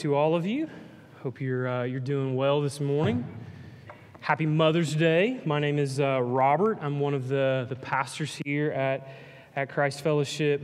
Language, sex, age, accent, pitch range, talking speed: English, male, 20-39, American, 135-160 Hz, 175 wpm